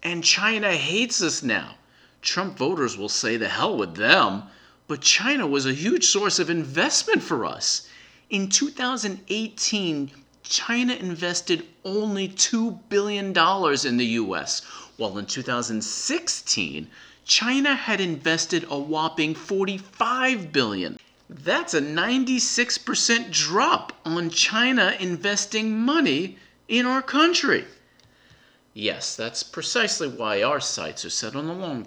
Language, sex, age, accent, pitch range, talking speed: English, male, 40-59, American, 150-245 Hz, 120 wpm